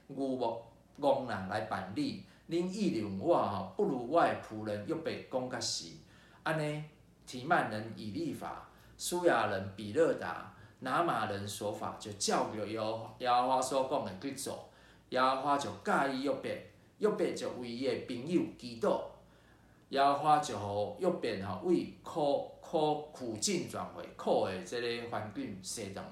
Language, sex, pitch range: Chinese, male, 105-160 Hz